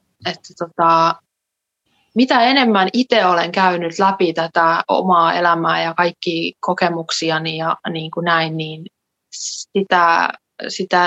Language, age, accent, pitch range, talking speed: Finnish, 20-39, native, 165-195 Hz, 110 wpm